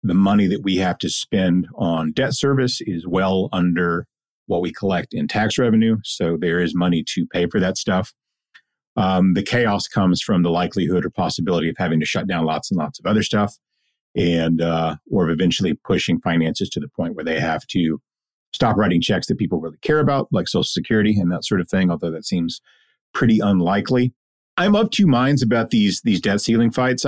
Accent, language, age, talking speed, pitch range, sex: American, English, 40-59, 205 wpm, 85-110 Hz, male